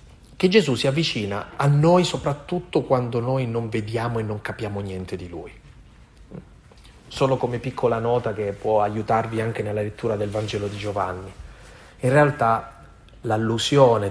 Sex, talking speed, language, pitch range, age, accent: male, 145 wpm, Italian, 105-125 Hz, 30-49, native